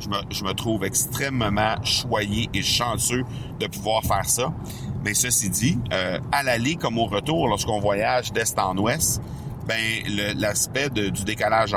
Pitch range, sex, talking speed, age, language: 100-130 Hz, male, 170 wpm, 50-69, French